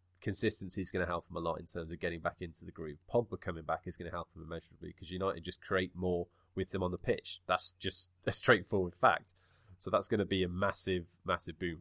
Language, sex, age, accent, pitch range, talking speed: English, male, 20-39, British, 85-95 Hz, 250 wpm